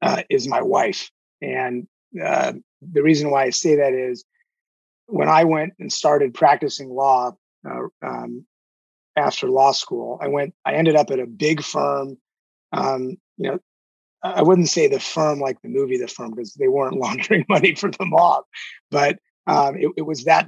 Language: English